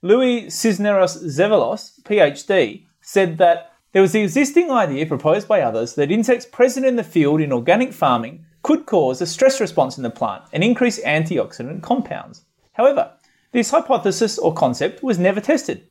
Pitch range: 160-245 Hz